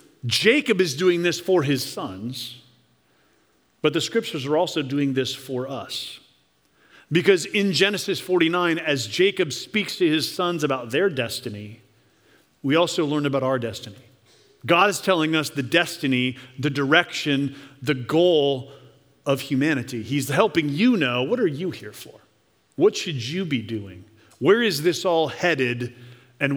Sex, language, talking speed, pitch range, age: male, English, 150 wpm, 130-180 Hz, 40-59